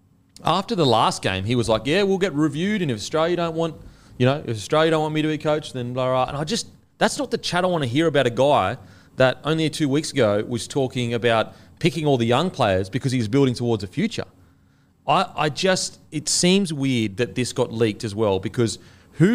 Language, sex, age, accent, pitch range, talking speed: English, male, 30-49, Australian, 105-155 Hz, 235 wpm